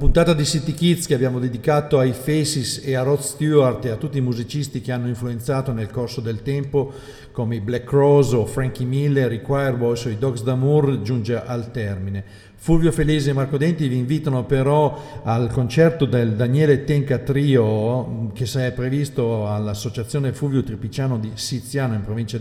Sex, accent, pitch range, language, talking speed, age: male, native, 115-140 Hz, Italian, 175 wpm, 50-69